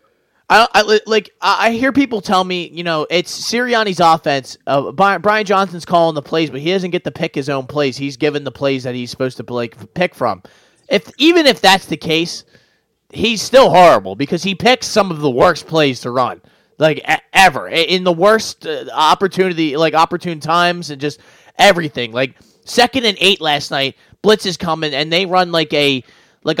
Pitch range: 155-205 Hz